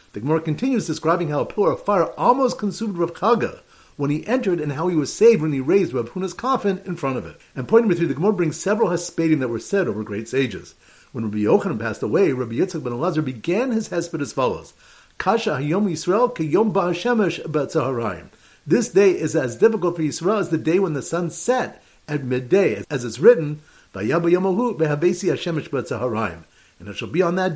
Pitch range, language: 145-195 Hz, English